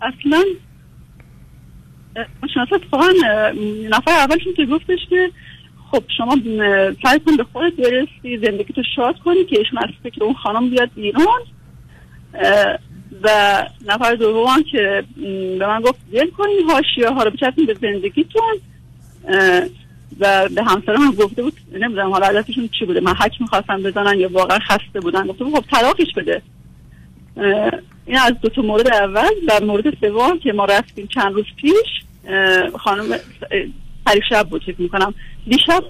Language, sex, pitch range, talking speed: Persian, female, 205-290 Hz, 140 wpm